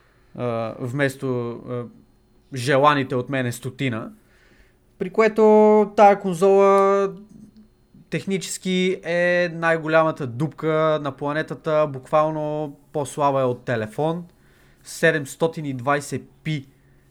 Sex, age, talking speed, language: male, 20-39, 90 wpm, Bulgarian